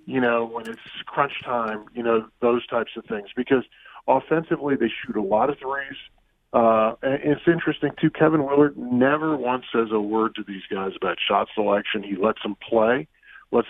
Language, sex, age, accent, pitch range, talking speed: English, male, 40-59, American, 110-140 Hz, 190 wpm